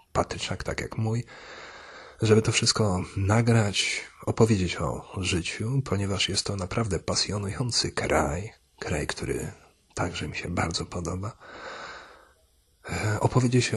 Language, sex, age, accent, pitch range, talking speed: Polish, male, 40-59, native, 80-105 Hz, 110 wpm